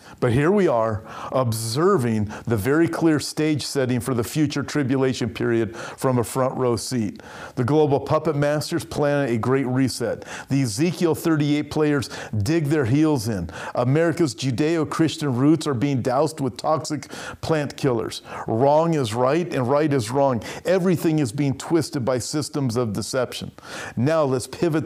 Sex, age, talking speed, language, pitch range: male, 50-69, 155 wpm, English, 125-150 Hz